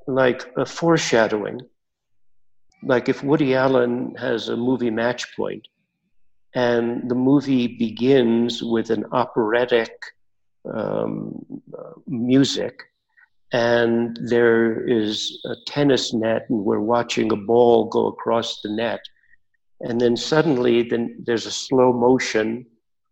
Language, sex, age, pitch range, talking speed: English, male, 60-79, 115-130 Hz, 115 wpm